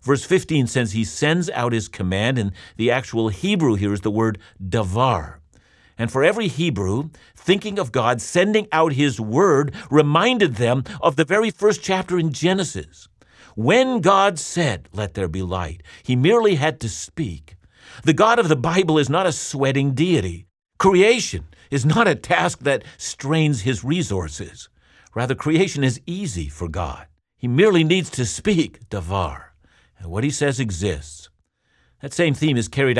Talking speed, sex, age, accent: 165 wpm, male, 50-69, American